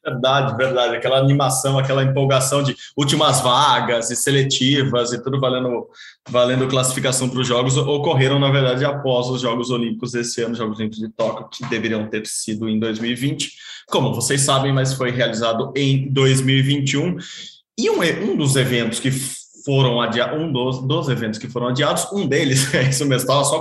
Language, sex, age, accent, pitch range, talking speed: Portuguese, male, 20-39, Brazilian, 125-145 Hz, 175 wpm